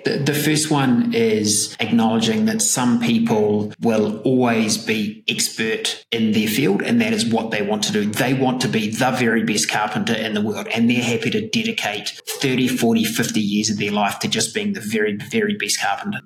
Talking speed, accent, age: 200 wpm, Australian, 30-49